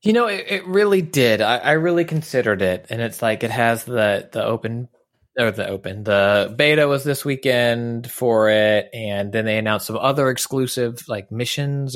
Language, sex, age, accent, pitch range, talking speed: English, male, 30-49, American, 100-130 Hz, 190 wpm